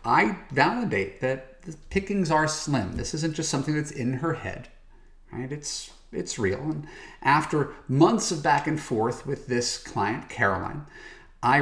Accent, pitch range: American, 110-150 Hz